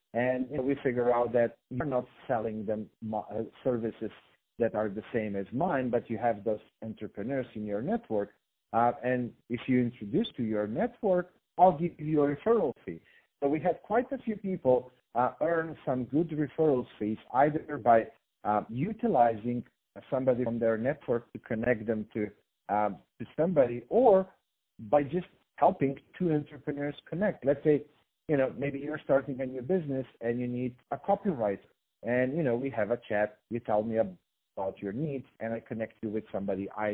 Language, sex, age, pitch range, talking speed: English, male, 50-69, 115-145 Hz, 175 wpm